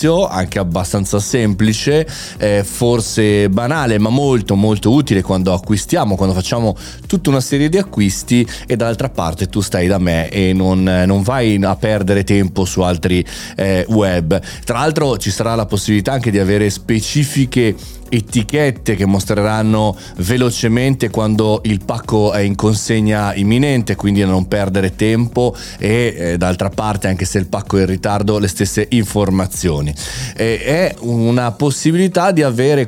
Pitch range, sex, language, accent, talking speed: 95-120 Hz, male, Italian, native, 150 wpm